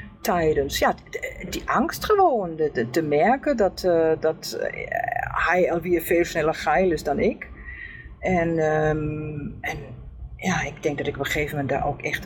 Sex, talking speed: female, 165 wpm